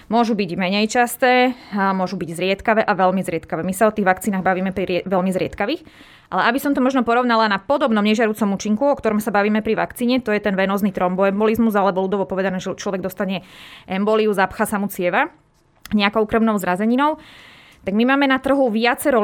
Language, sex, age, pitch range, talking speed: Slovak, female, 20-39, 195-230 Hz, 195 wpm